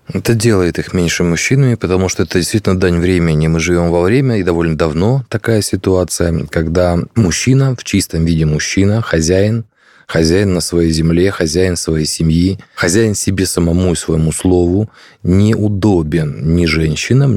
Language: Russian